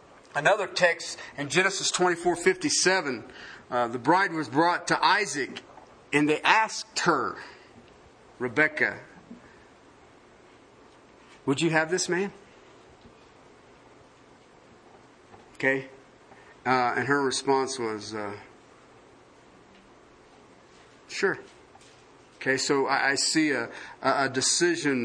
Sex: male